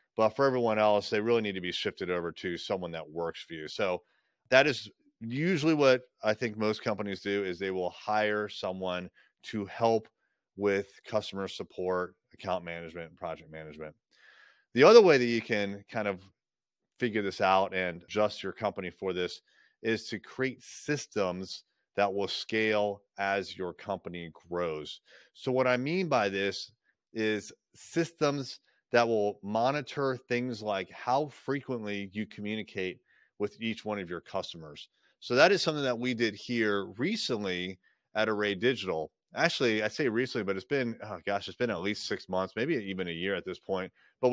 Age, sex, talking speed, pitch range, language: 30-49, male, 175 wpm, 95-125 Hz, English